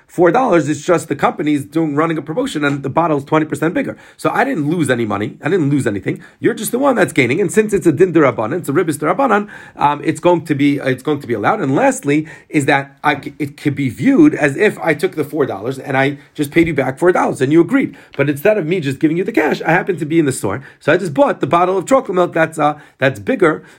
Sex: male